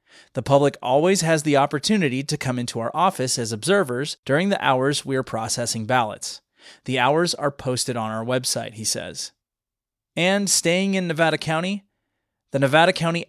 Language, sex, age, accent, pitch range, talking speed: English, male, 30-49, American, 125-175 Hz, 165 wpm